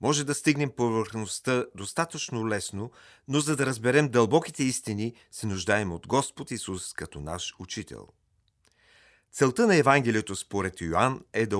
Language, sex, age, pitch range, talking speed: Bulgarian, male, 40-59, 100-130 Hz, 140 wpm